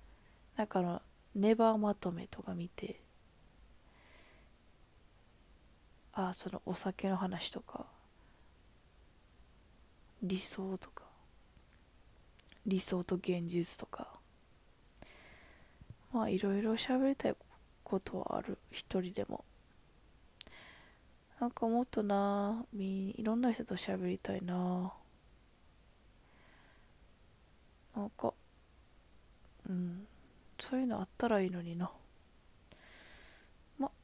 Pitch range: 170-225 Hz